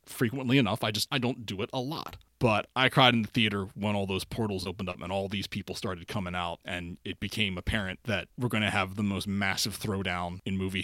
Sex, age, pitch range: male, 30-49, 95-120 Hz